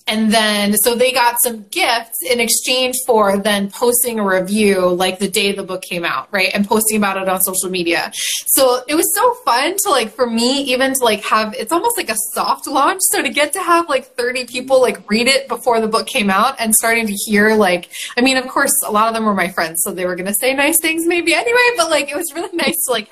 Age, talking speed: 20-39, 250 wpm